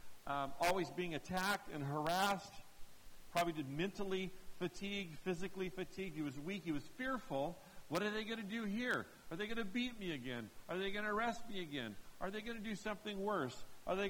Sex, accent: male, American